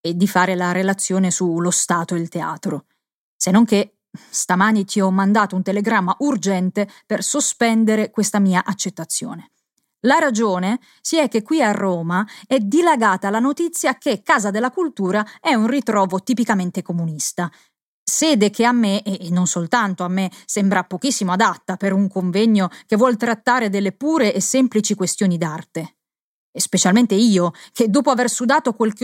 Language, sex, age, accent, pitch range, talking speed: Italian, female, 30-49, native, 190-255 Hz, 160 wpm